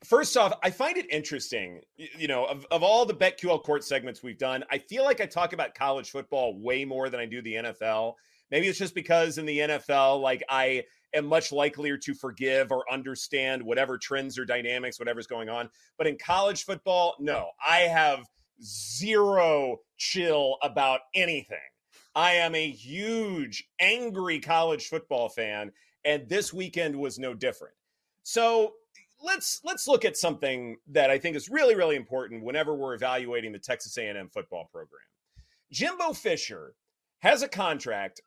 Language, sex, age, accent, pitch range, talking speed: English, male, 30-49, American, 135-215 Hz, 165 wpm